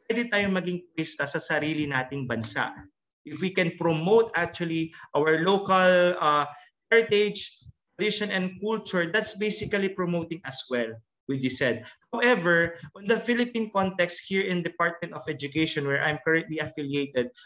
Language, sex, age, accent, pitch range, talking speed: Filipino, male, 20-39, native, 150-195 Hz, 115 wpm